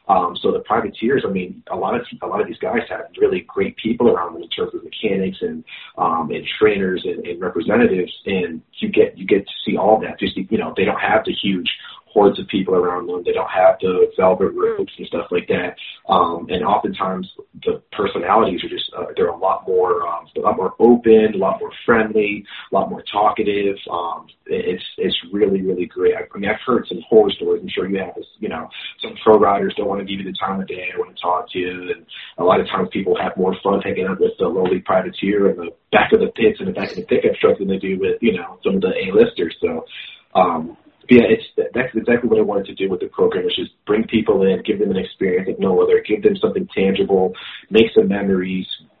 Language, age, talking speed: English, 30-49, 245 wpm